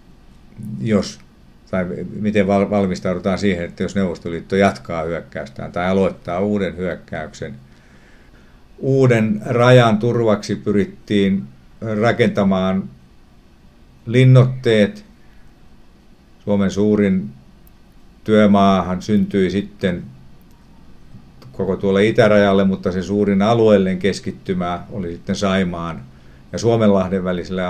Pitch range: 75-105 Hz